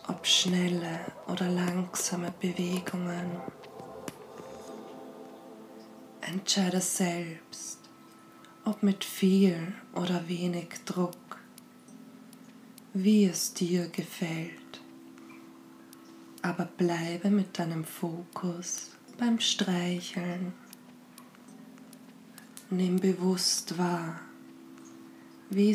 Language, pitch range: German, 175-200 Hz